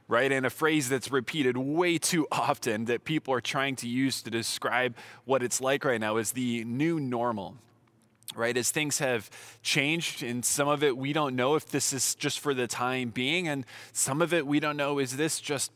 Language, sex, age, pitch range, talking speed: English, male, 20-39, 120-150 Hz, 215 wpm